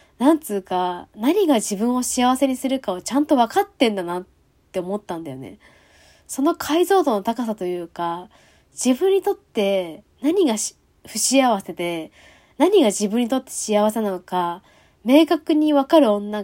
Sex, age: female, 20-39